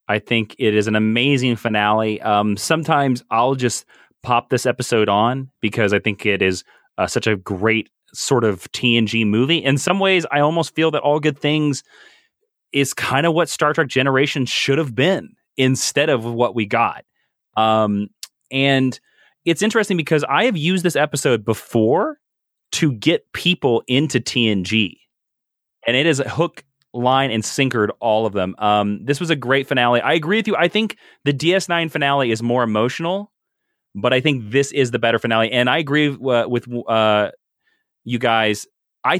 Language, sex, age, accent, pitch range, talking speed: English, male, 30-49, American, 110-145 Hz, 175 wpm